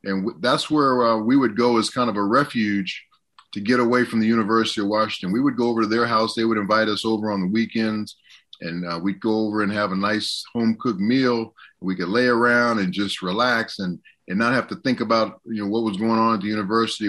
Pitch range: 105-125 Hz